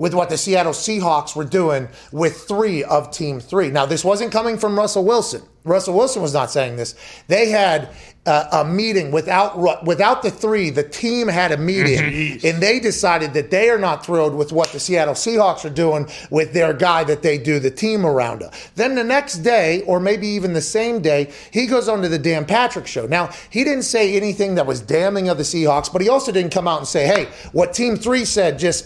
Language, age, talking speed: English, 30-49, 220 wpm